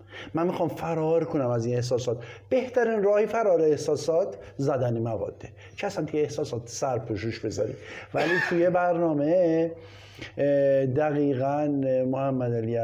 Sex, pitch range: male, 115-150 Hz